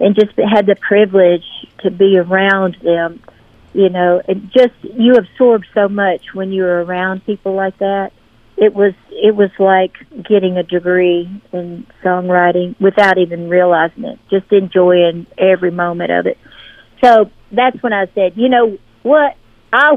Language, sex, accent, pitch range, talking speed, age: English, female, American, 180-215 Hz, 155 wpm, 50-69